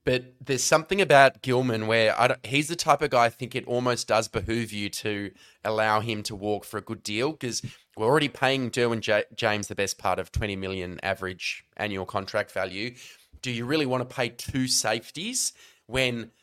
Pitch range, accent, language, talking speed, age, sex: 105-130 Hz, Australian, English, 185 wpm, 20-39, male